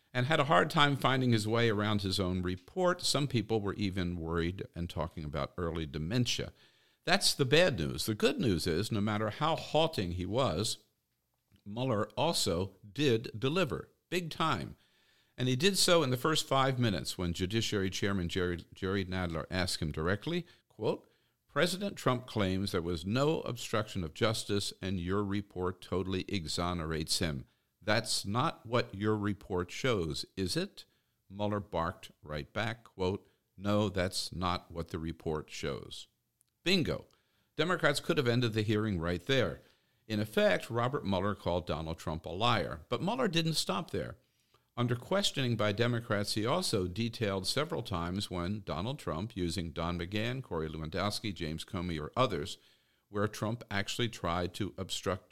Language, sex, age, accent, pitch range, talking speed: English, male, 50-69, American, 90-120 Hz, 160 wpm